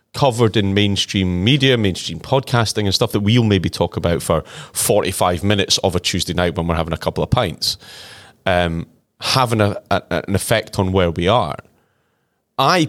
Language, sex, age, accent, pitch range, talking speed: English, male, 30-49, British, 90-110 Hz, 170 wpm